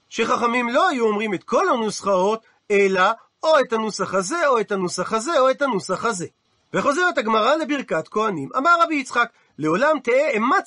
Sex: male